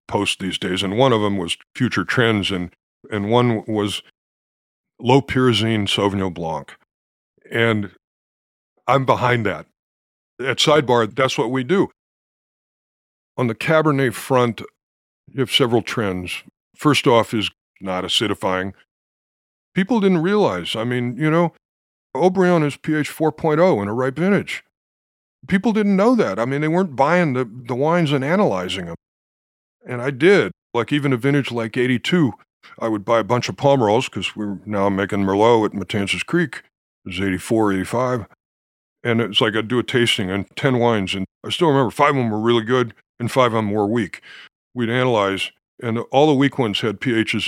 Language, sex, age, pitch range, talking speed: English, male, 50-69, 100-135 Hz, 170 wpm